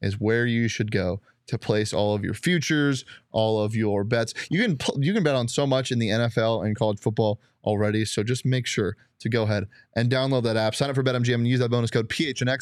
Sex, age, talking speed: male, 20-39, 245 wpm